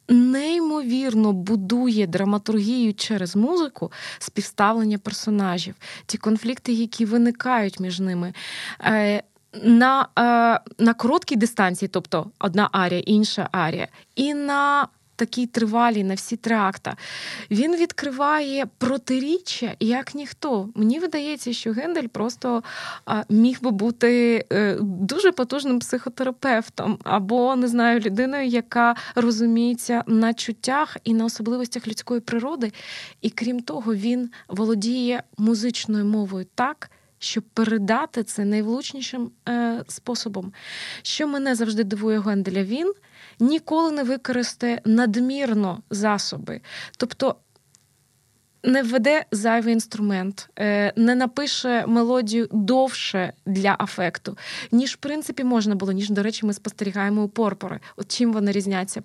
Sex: female